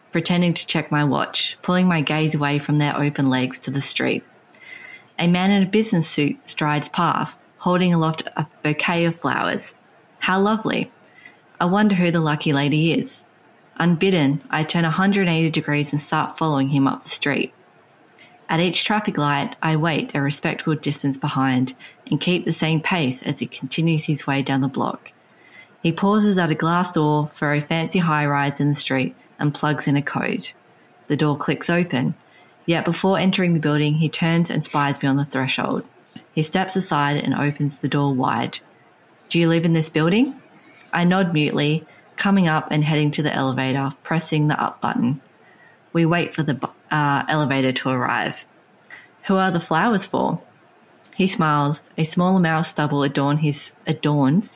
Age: 20-39